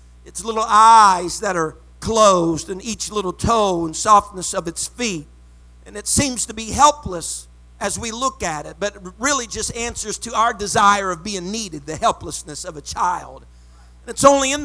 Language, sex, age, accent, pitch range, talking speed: English, male, 50-69, American, 175-235 Hz, 180 wpm